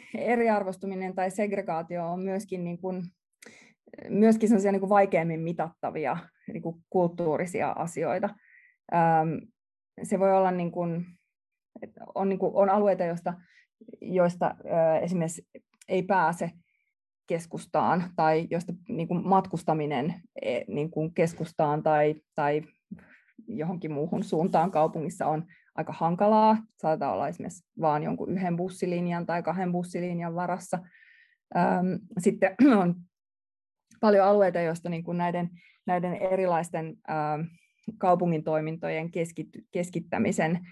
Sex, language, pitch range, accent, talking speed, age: female, Finnish, 165-200 Hz, native, 80 wpm, 20-39